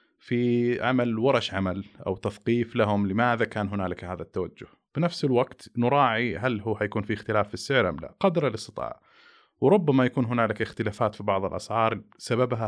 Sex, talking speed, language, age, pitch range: male, 160 wpm, Arabic, 30-49, 100-120 Hz